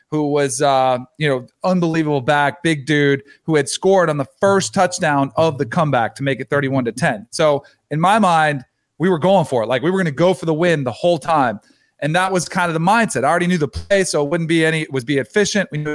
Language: English